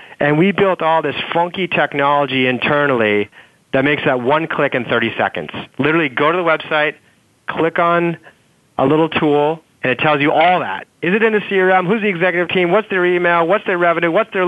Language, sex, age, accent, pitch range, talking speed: English, male, 30-49, American, 130-165 Hz, 205 wpm